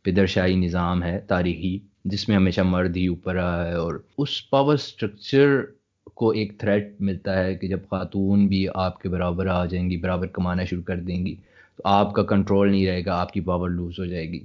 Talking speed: 210 wpm